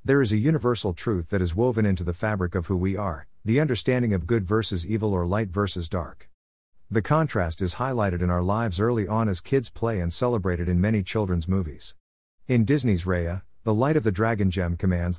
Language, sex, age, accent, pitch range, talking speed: English, male, 50-69, American, 90-115 Hz, 210 wpm